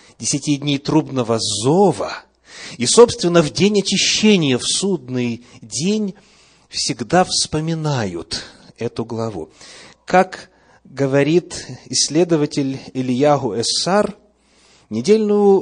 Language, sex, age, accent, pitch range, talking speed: Russian, male, 30-49, native, 130-195 Hz, 85 wpm